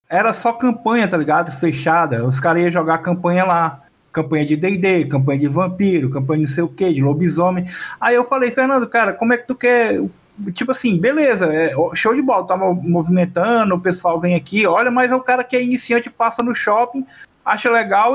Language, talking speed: Portuguese, 205 wpm